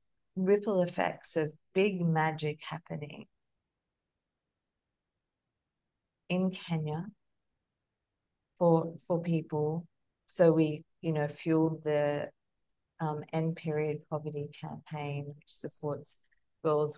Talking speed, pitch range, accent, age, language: 90 wpm, 150-170 Hz, Australian, 40-59, English